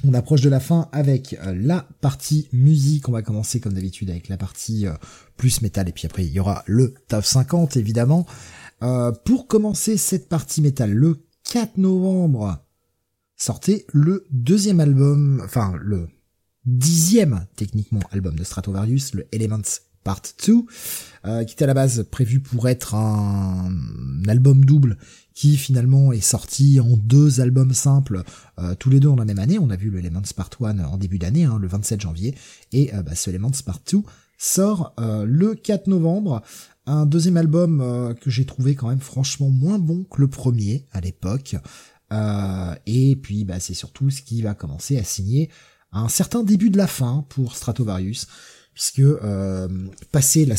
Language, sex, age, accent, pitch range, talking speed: French, male, 20-39, French, 100-145 Hz, 170 wpm